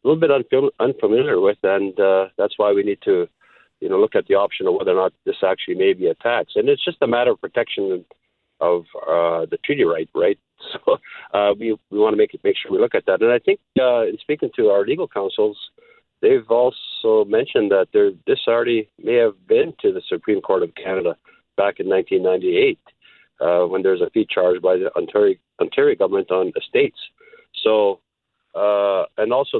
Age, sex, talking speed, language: 50-69, male, 205 wpm, English